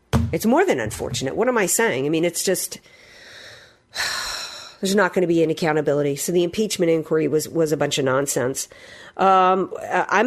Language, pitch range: English, 170-230 Hz